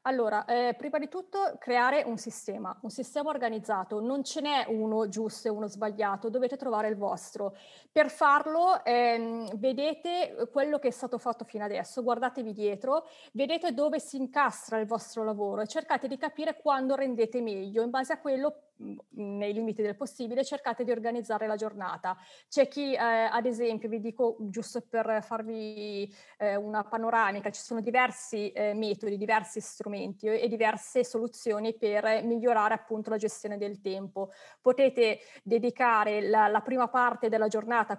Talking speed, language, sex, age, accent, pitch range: 160 wpm, Italian, female, 30-49, native, 215-260 Hz